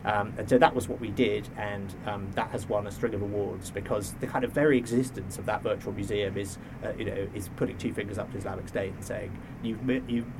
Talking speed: 240 wpm